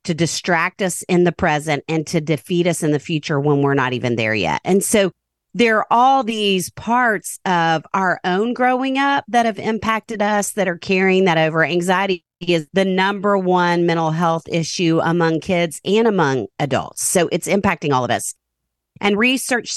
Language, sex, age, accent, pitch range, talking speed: English, female, 40-59, American, 160-205 Hz, 185 wpm